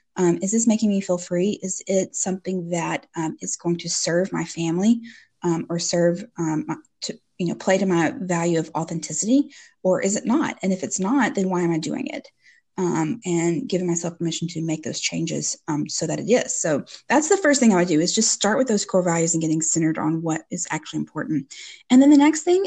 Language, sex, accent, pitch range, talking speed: English, female, American, 170-230 Hz, 235 wpm